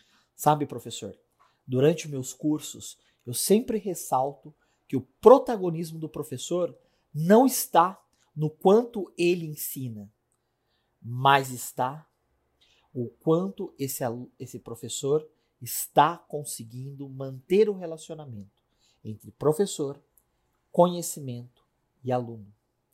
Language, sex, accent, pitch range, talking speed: Portuguese, male, Brazilian, 120-170 Hz, 95 wpm